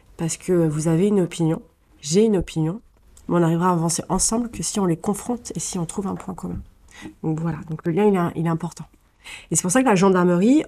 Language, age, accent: French, 30-49, French